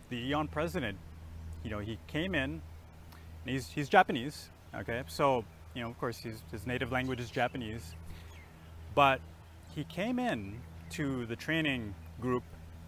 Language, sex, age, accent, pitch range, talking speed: English, male, 30-49, American, 85-130 Hz, 140 wpm